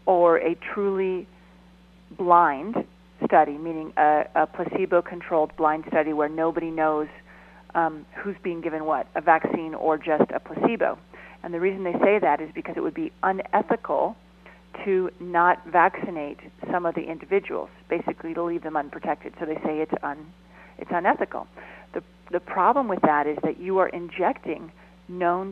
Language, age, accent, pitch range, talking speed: English, 40-59, American, 155-185 Hz, 155 wpm